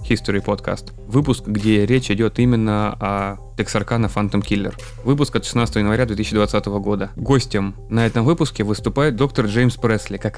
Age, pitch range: 20-39, 100-125 Hz